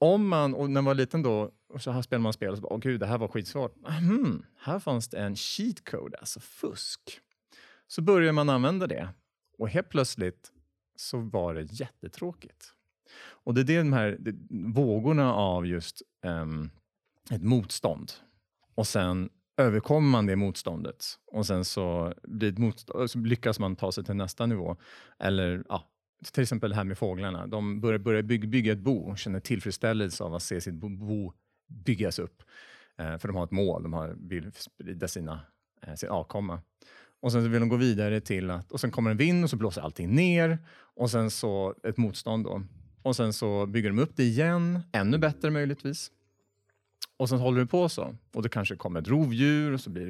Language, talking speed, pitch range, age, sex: Swedish, 195 wpm, 95-130 Hz, 30-49, male